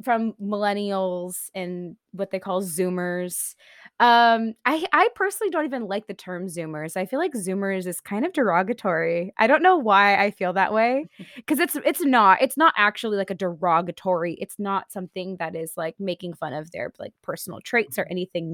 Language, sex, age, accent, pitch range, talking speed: English, female, 20-39, American, 185-250 Hz, 190 wpm